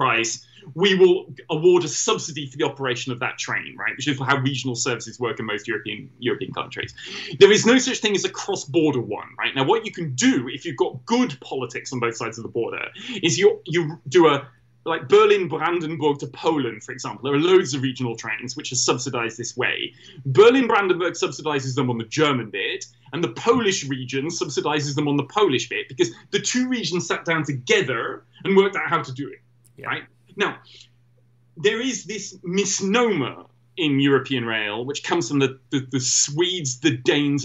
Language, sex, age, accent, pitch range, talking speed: English, male, 30-49, British, 130-195 Hz, 190 wpm